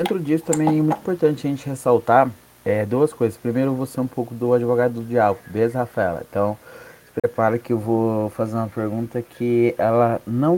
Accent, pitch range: Brazilian, 115-155 Hz